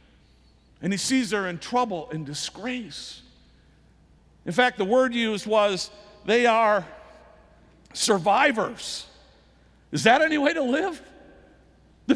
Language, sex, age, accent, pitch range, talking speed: English, male, 50-69, American, 210-265 Hz, 120 wpm